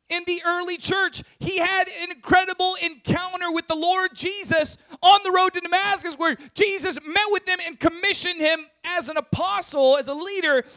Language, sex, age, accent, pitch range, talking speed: English, male, 30-49, American, 255-350 Hz, 180 wpm